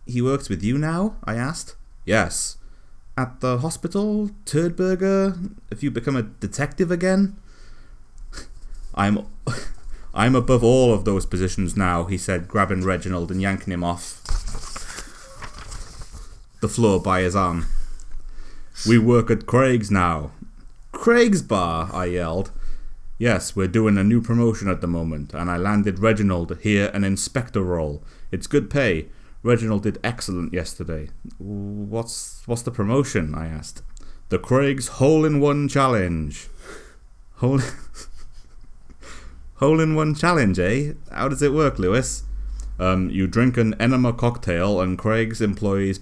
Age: 30-49